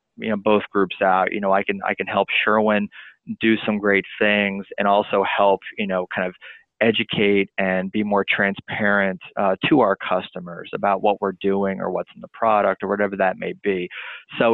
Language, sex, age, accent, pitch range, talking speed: English, male, 20-39, American, 100-110 Hz, 200 wpm